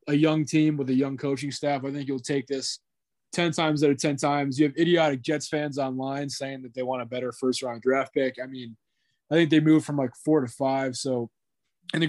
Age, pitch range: 20-39, 130-150 Hz